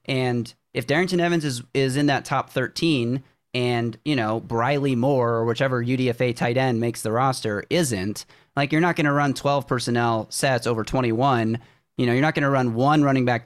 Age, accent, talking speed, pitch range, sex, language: 30-49, American, 200 wpm, 120-150 Hz, male, English